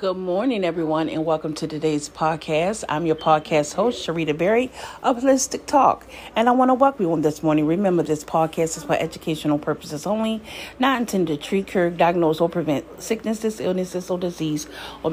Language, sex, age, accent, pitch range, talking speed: English, female, 40-59, American, 160-205 Hz, 185 wpm